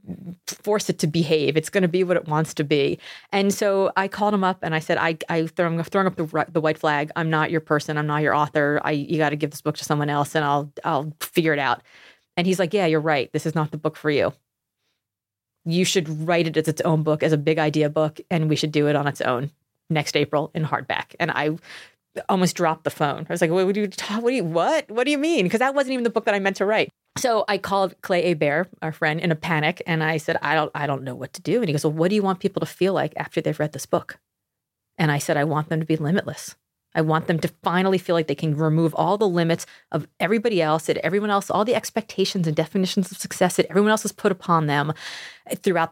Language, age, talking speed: English, 30-49, 265 wpm